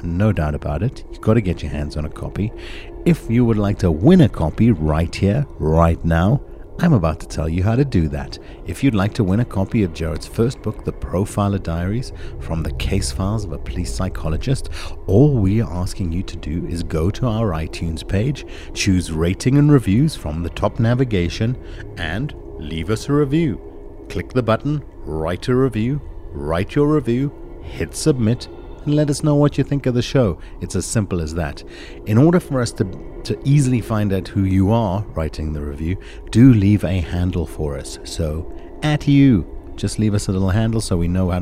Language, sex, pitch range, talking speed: English, male, 80-115 Hz, 205 wpm